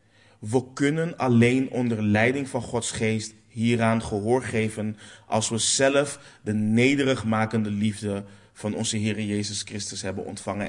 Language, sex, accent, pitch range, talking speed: Dutch, male, Dutch, 105-125 Hz, 135 wpm